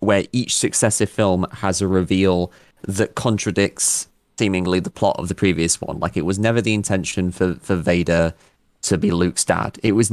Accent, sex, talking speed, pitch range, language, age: British, male, 185 wpm, 90-105 Hz, English, 20-39